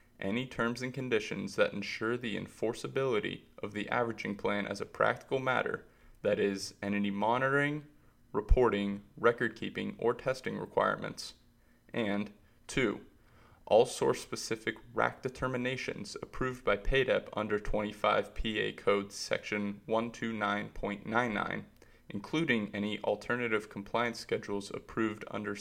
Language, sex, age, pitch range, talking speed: English, male, 20-39, 100-120 Hz, 110 wpm